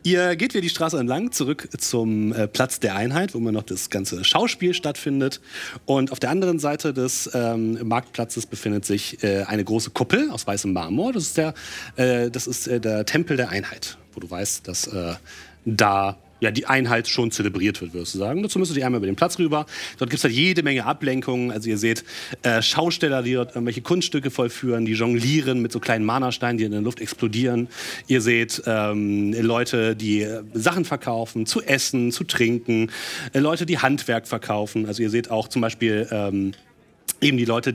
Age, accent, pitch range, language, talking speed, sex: 30-49, German, 110-145 Hz, German, 195 wpm, male